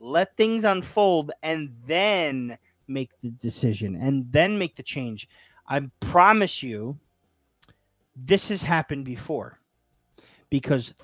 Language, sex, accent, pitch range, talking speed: English, male, American, 120-170 Hz, 115 wpm